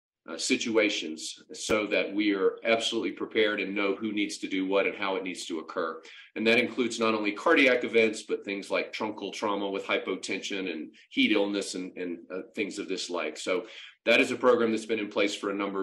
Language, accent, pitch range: English, American, 100-130 Hz